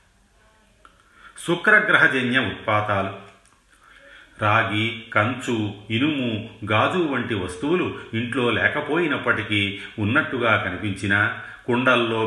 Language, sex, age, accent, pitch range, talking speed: Telugu, male, 40-59, native, 100-115 Hz, 65 wpm